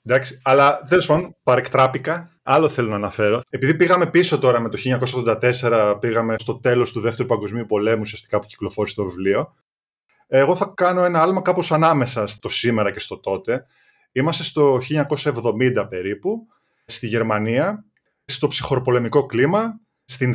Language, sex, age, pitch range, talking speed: Greek, male, 20-39, 120-160 Hz, 140 wpm